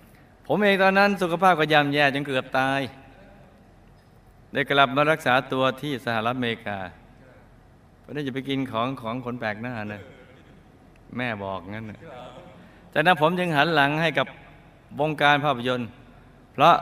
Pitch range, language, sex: 110-140 Hz, Thai, male